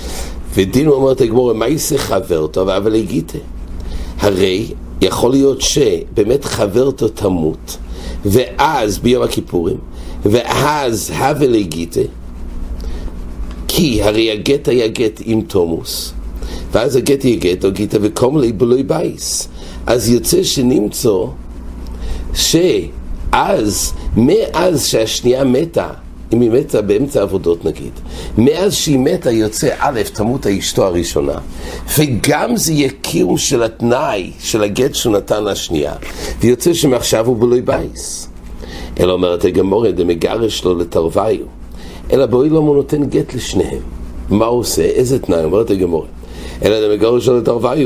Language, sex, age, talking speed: English, male, 60-79, 110 wpm